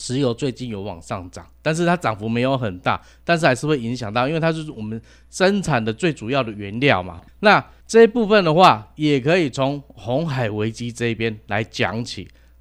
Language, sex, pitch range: Chinese, male, 110-150 Hz